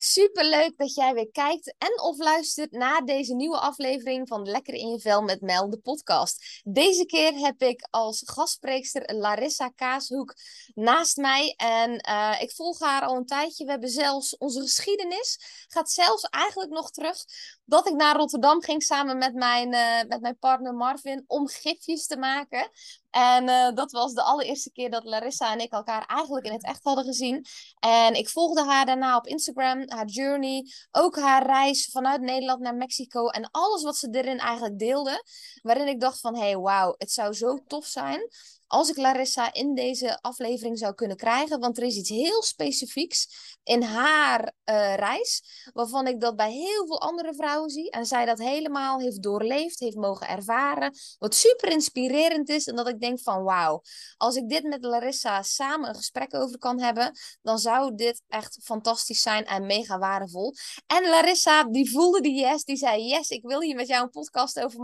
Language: Dutch